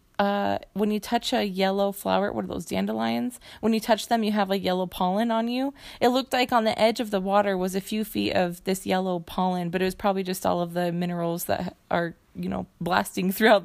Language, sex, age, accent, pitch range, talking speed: English, female, 20-39, American, 185-215 Hz, 240 wpm